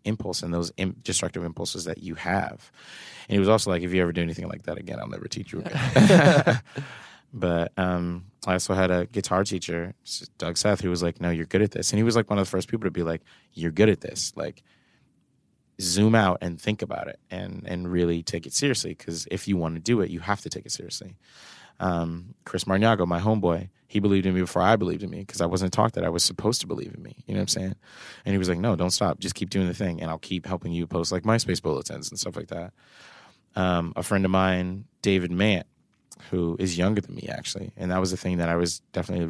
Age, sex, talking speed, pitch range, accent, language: 30-49, male, 250 wpm, 85-100 Hz, American, English